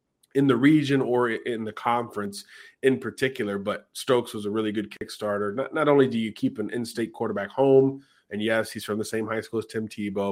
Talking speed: 215 wpm